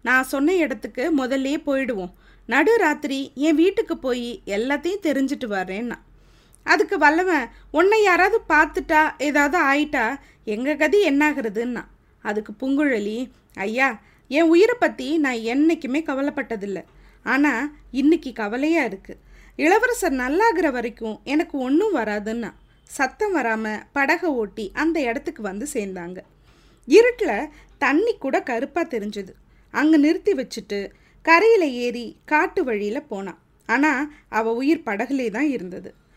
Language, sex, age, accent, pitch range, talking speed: Tamil, female, 20-39, native, 240-335 Hz, 115 wpm